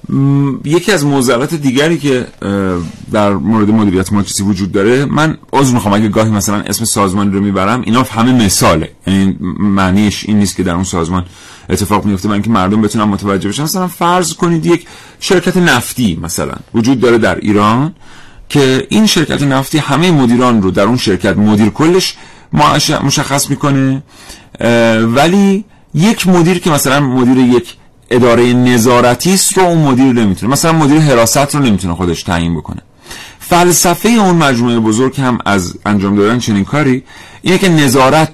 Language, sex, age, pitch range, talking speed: Persian, male, 40-59, 105-150 Hz, 155 wpm